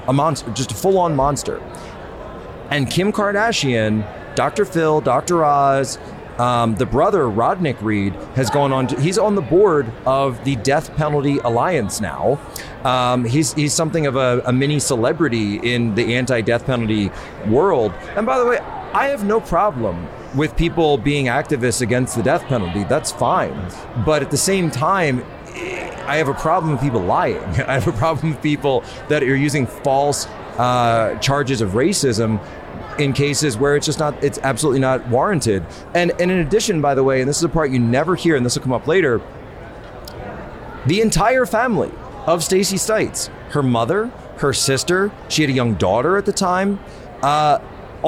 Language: English